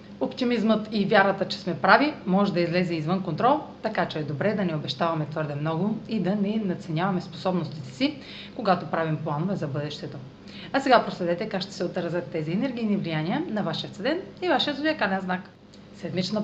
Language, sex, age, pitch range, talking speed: Bulgarian, female, 30-49, 170-220 Hz, 180 wpm